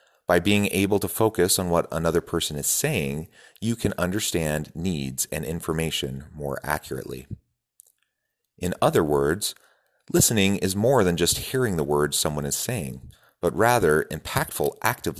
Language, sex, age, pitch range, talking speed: English, male, 30-49, 70-95 Hz, 145 wpm